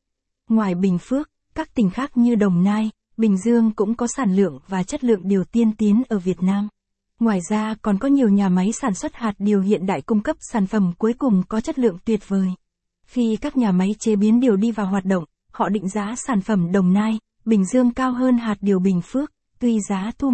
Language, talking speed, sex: Vietnamese, 225 wpm, female